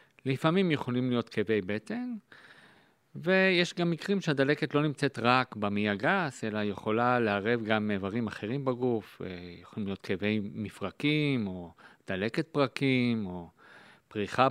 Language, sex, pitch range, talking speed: Hebrew, male, 110-150 Hz, 125 wpm